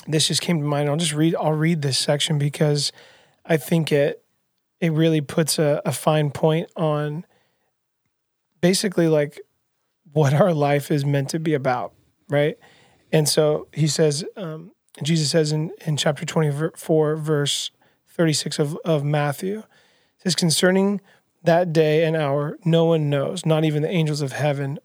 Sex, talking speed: male, 165 wpm